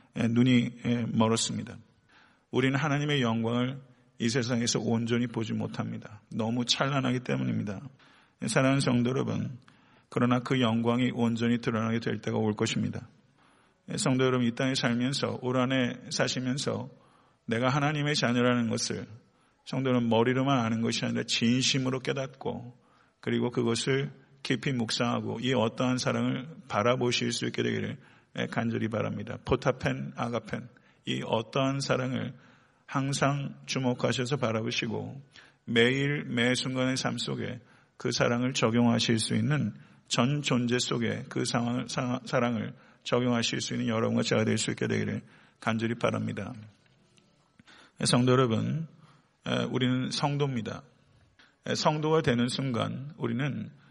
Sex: male